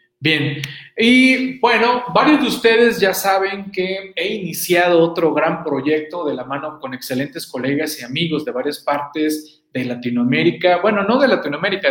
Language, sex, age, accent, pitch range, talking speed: Spanish, male, 40-59, Mexican, 140-185 Hz, 155 wpm